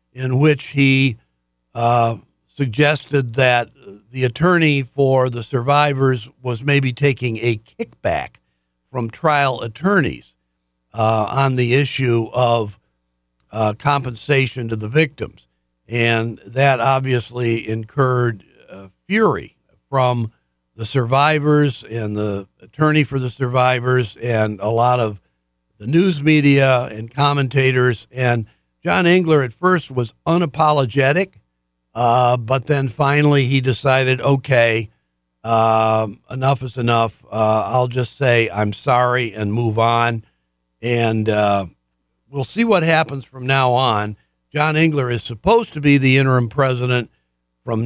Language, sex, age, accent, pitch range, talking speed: English, male, 60-79, American, 110-140 Hz, 125 wpm